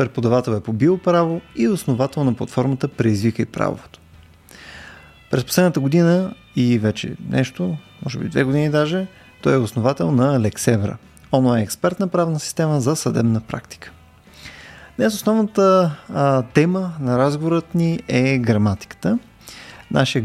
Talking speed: 125 wpm